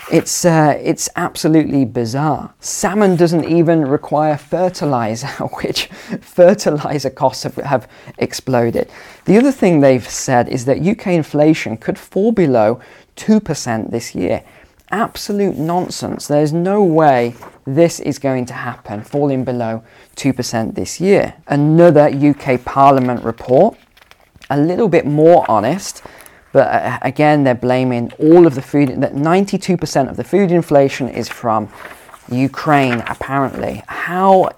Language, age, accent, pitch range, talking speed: English, 20-39, British, 125-160 Hz, 130 wpm